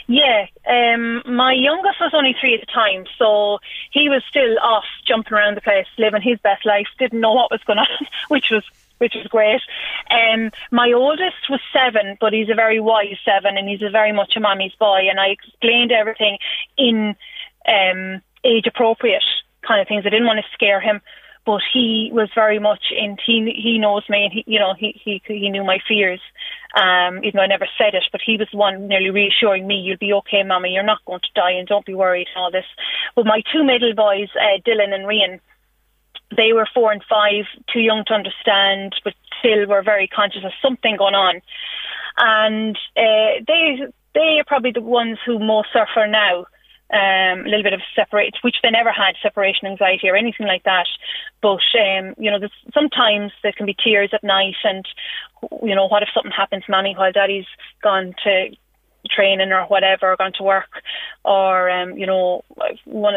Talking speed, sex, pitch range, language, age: 200 wpm, female, 195-230 Hz, English, 30-49